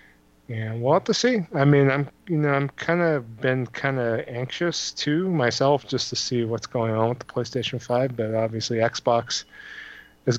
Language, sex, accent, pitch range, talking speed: English, male, American, 110-135 Hz, 180 wpm